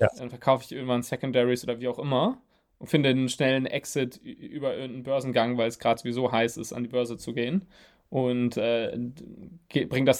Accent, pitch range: German, 120-145 Hz